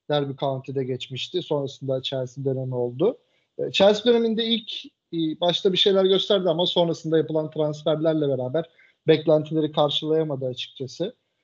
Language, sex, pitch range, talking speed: Turkish, male, 145-170 Hz, 115 wpm